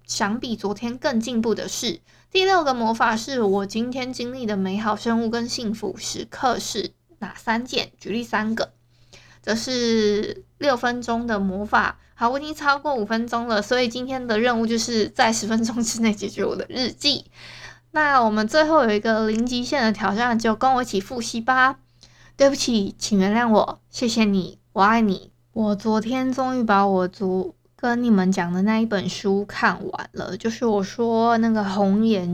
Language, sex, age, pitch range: Chinese, female, 20-39, 200-245 Hz